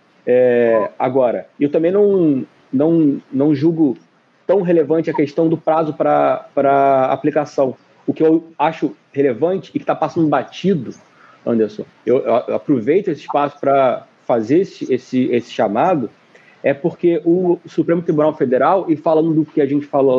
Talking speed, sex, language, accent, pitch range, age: 160 wpm, male, Portuguese, Brazilian, 145-200 Hz, 30-49